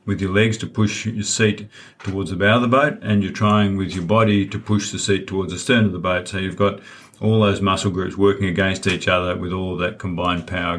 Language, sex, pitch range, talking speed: English, male, 90-105 Hz, 250 wpm